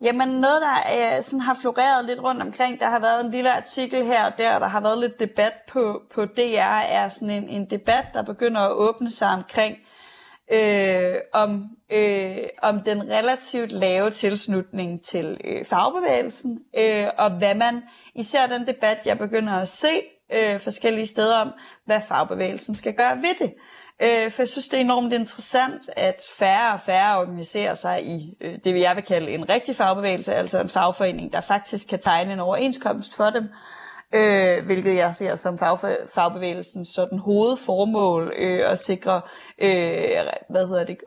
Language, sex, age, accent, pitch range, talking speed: Danish, female, 30-49, native, 190-240 Hz, 165 wpm